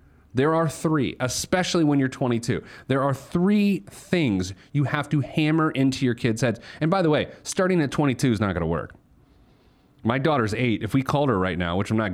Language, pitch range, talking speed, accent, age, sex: English, 95-145 Hz, 215 wpm, American, 30-49, male